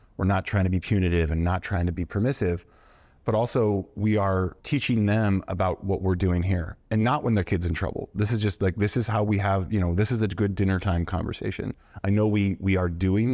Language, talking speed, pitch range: English, 245 wpm, 90-105 Hz